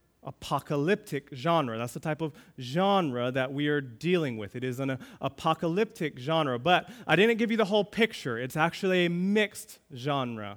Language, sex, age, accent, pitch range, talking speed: English, male, 30-49, American, 150-200 Hz, 170 wpm